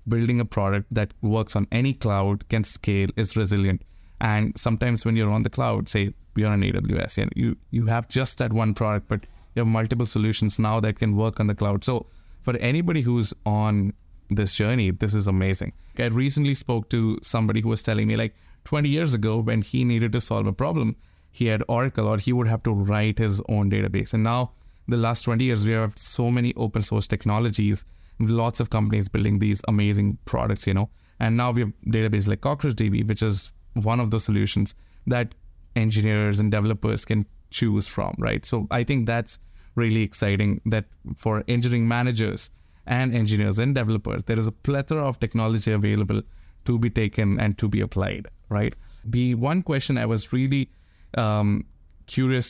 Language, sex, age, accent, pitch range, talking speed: English, male, 20-39, Indian, 100-120 Hz, 185 wpm